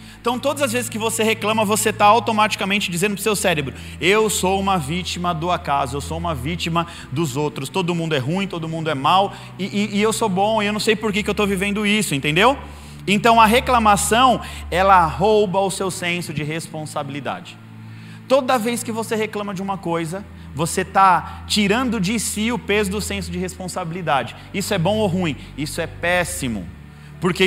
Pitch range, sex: 165-210 Hz, male